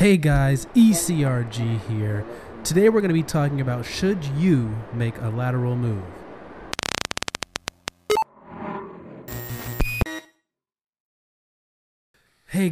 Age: 30-49